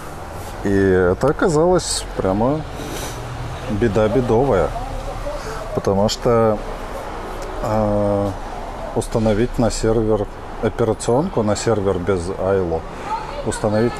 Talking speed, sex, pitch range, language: 75 wpm, male, 95-115 Hz, Russian